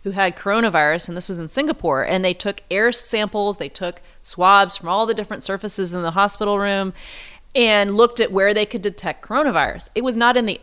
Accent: American